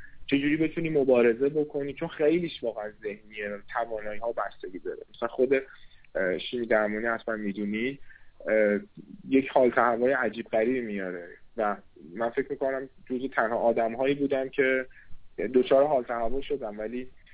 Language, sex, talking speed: Persian, male, 135 wpm